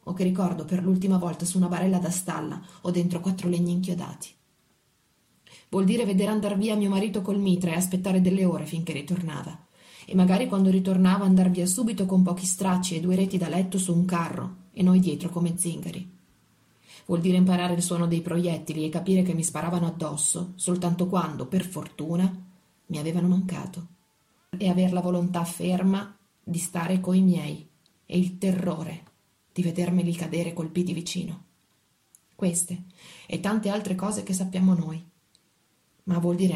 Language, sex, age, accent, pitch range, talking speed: Italian, female, 30-49, native, 170-185 Hz, 165 wpm